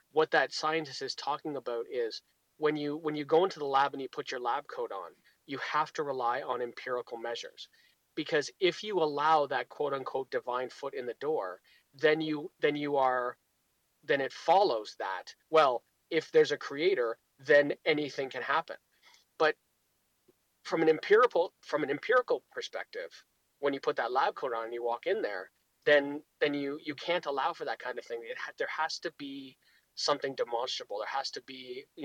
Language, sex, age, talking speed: English, male, 30-49, 195 wpm